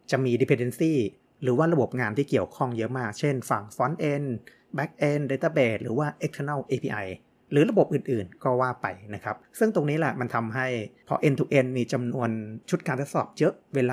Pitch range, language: 115-140 Hz, Thai